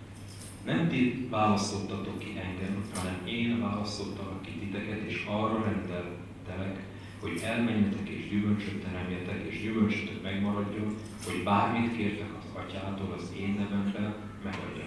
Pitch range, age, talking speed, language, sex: 95-110 Hz, 40-59, 120 wpm, Hungarian, male